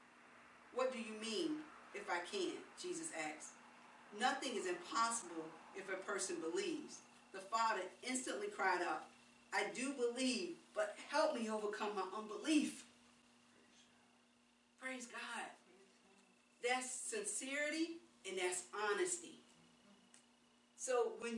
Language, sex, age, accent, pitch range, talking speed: English, female, 40-59, American, 225-315 Hz, 110 wpm